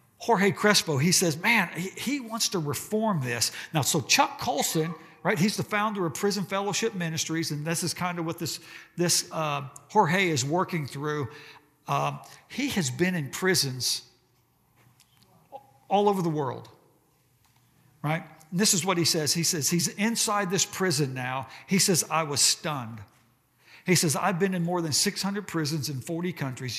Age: 60-79